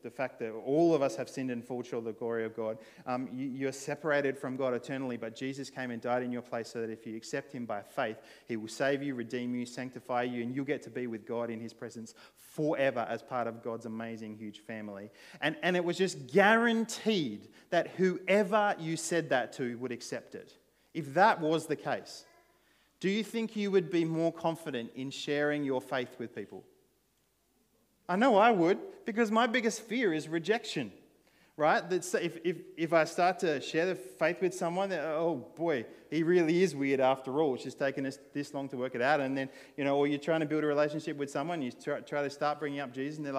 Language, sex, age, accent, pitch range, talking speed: English, male, 30-49, Australian, 120-165 Hz, 225 wpm